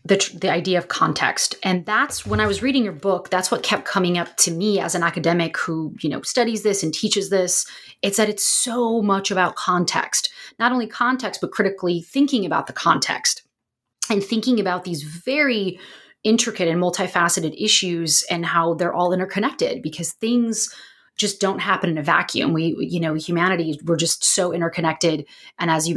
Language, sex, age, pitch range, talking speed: English, female, 30-49, 170-210 Hz, 185 wpm